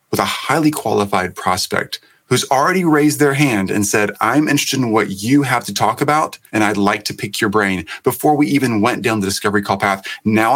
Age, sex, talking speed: 30-49, male, 215 wpm